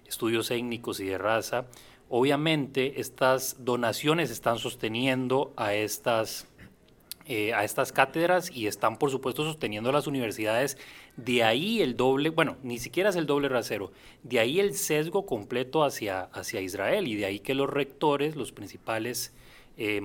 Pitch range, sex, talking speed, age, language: 110-140 Hz, male, 150 wpm, 30-49, Spanish